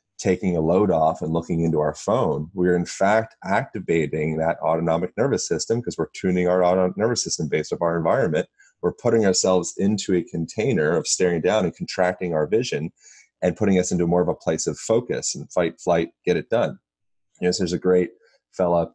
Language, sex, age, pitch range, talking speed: English, male, 30-49, 80-90 Hz, 195 wpm